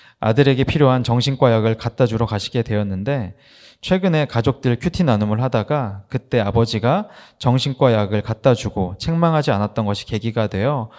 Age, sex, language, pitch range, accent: 20-39, male, Korean, 105-140 Hz, native